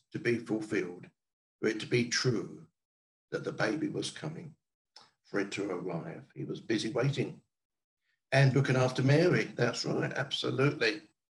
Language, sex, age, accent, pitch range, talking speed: English, male, 60-79, British, 110-145 Hz, 150 wpm